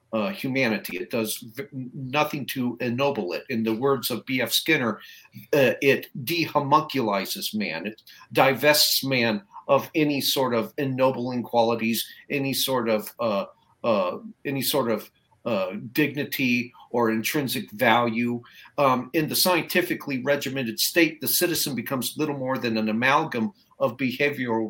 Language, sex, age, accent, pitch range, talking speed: English, male, 50-69, American, 115-150 Hz, 140 wpm